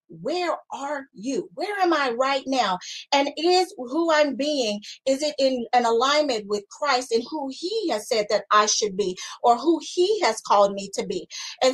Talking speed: 195 wpm